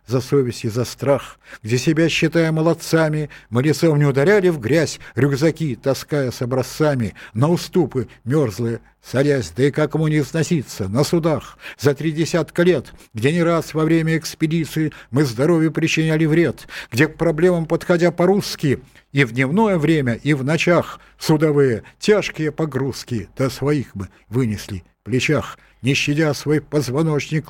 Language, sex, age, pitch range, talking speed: Russian, male, 60-79, 130-165 Hz, 155 wpm